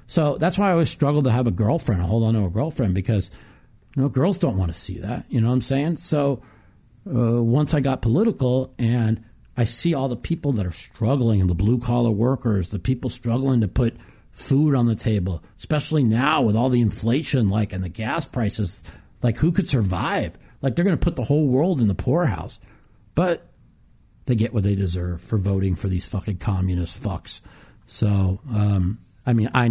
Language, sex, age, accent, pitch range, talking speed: English, male, 50-69, American, 95-125 Hz, 205 wpm